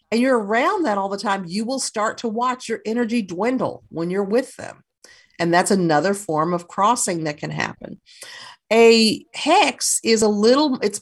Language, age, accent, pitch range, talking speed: English, 50-69, American, 175-240 Hz, 185 wpm